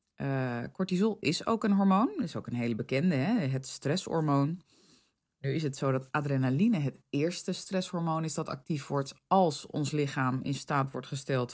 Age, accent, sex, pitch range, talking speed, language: 20-39, Dutch, female, 135-185 Hz, 175 wpm, Dutch